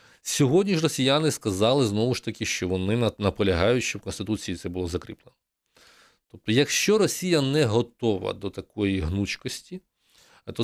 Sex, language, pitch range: male, Ukrainian, 95-130 Hz